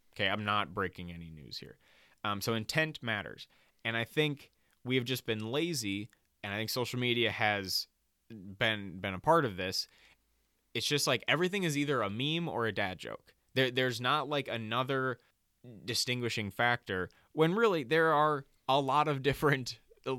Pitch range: 100-125 Hz